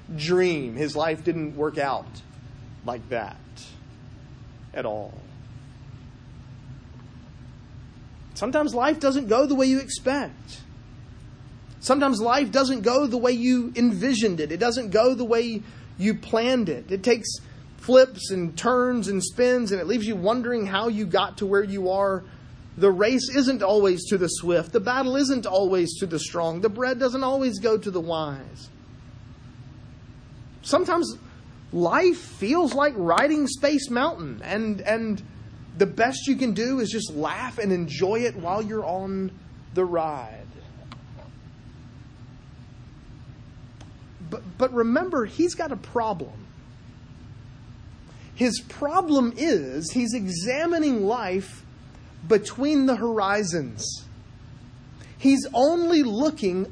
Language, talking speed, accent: English, 125 wpm, American